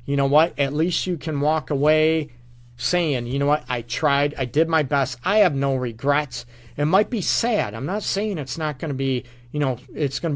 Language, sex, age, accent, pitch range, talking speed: English, male, 40-59, American, 130-170 Hz, 230 wpm